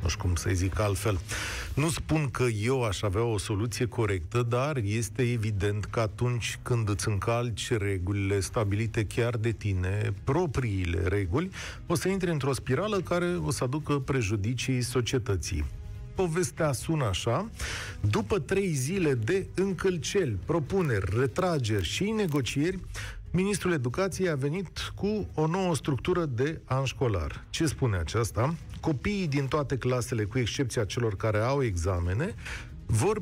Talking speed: 140 wpm